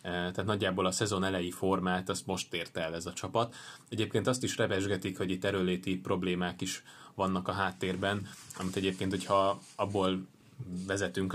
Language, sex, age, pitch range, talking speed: Hungarian, male, 20-39, 90-100 Hz, 160 wpm